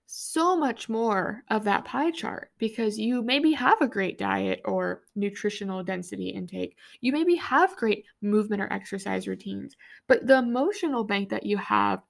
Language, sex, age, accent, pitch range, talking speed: English, female, 20-39, American, 195-255 Hz, 165 wpm